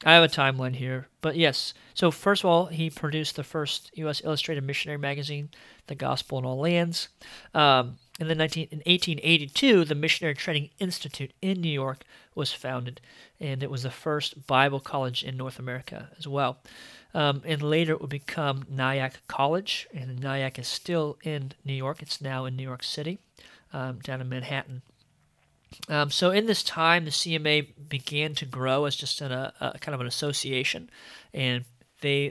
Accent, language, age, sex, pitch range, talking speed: American, English, 40-59, male, 135-160 Hz, 175 wpm